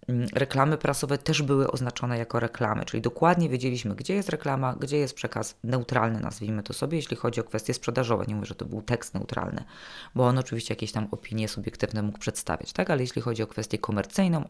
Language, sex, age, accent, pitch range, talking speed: Polish, female, 20-39, native, 115-140 Hz, 195 wpm